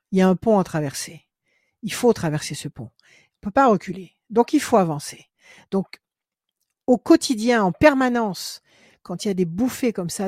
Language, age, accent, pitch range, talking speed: French, 60-79, French, 165-220 Hz, 200 wpm